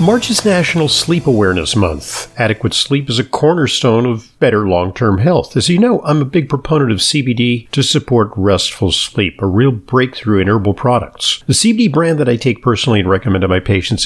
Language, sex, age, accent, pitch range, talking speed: English, male, 50-69, American, 105-145 Hz, 195 wpm